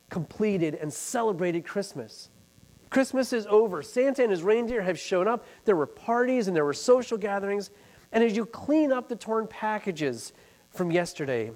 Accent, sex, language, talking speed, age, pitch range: American, male, English, 165 wpm, 40-59, 140-220 Hz